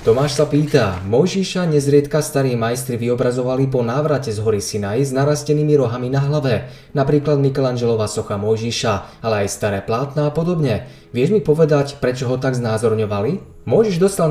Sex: male